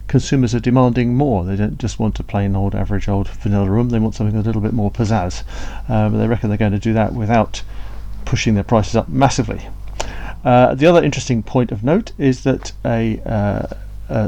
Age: 40-59